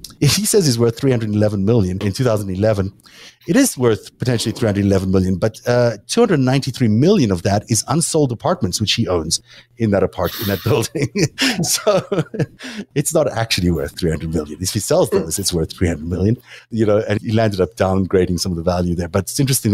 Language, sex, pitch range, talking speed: English, male, 95-130 Hz, 190 wpm